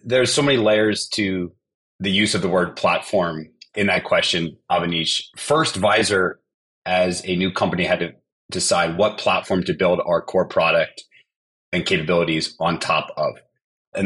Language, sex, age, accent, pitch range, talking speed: English, male, 30-49, American, 85-105 Hz, 160 wpm